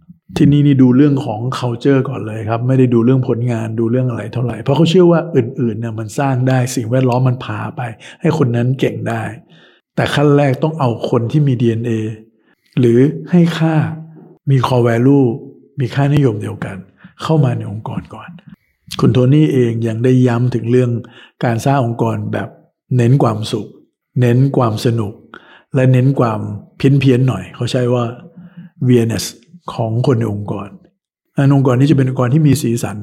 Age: 60-79